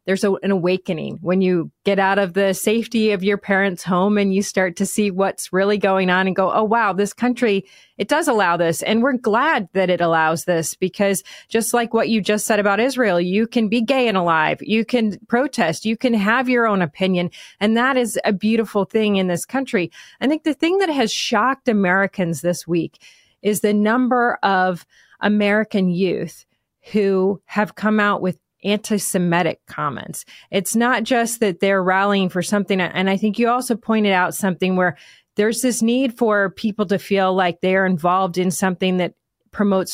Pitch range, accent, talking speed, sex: 185-230 Hz, American, 190 wpm, female